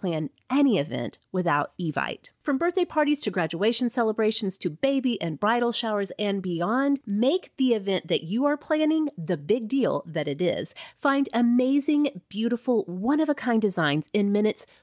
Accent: American